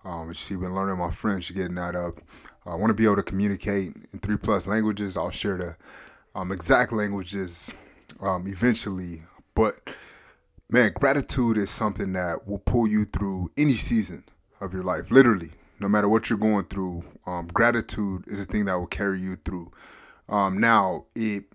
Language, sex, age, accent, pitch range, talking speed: English, male, 20-39, American, 95-110 Hz, 180 wpm